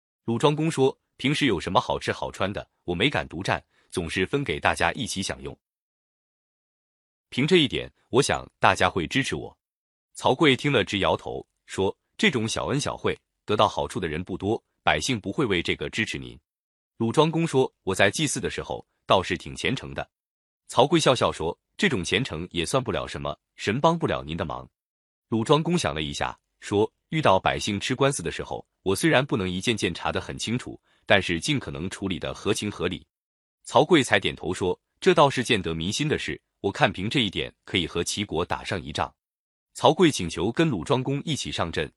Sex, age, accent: male, 30-49, native